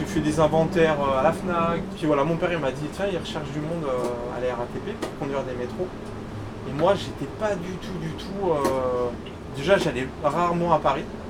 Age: 20-39